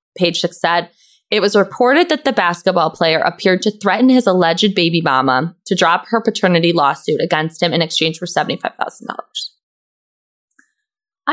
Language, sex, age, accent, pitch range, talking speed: English, female, 20-39, American, 170-210 Hz, 150 wpm